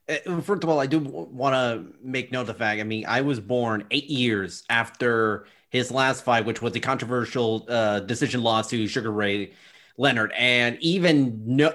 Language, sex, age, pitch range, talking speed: English, male, 30-49, 120-145 Hz, 190 wpm